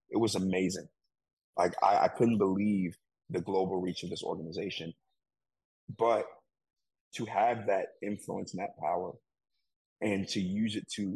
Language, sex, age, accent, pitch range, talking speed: English, male, 30-49, American, 90-105 Hz, 145 wpm